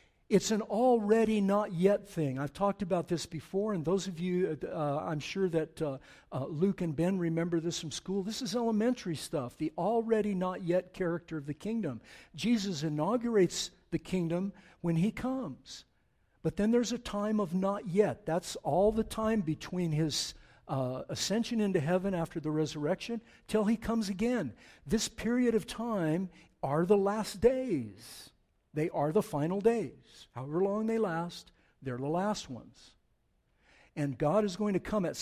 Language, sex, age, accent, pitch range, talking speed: English, male, 60-79, American, 155-215 Hz, 170 wpm